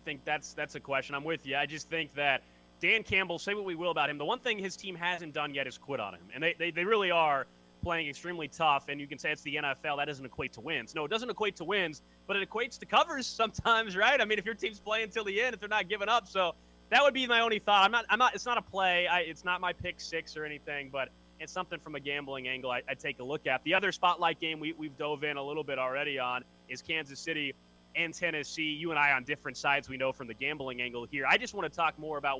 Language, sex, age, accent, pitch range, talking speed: English, male, 20-39, American, 140-180 Hz, 285 wpm